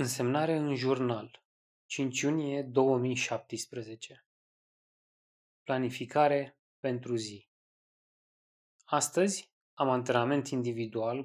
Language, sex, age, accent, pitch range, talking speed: Romanian, male, 20-39, native, 120-150 Hz, 70 wpm